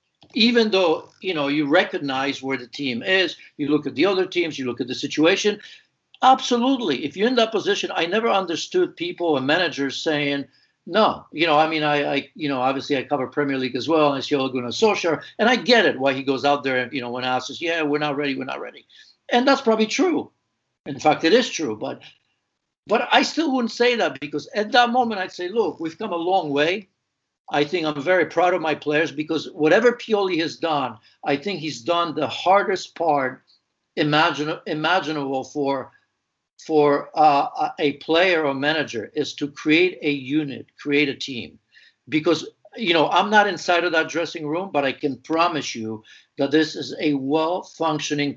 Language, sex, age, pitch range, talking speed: English, male, 60-79, 145-190 Hz, 200 wpm